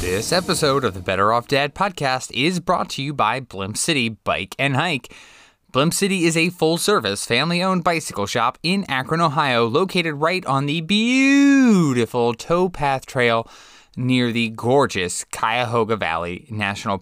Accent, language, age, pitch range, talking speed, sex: American, English, 20-39, 105-160 Hz, 150 wpm, male